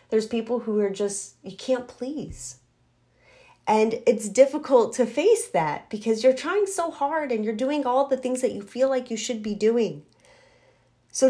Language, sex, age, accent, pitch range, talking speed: English, female, 30-49, American, 190-255 Hz, 180 wpm